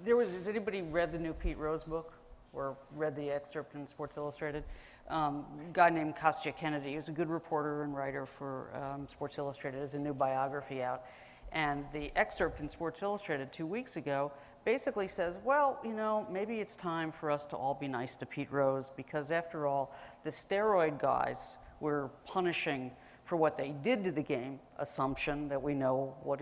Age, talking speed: 50-69, 190 wpm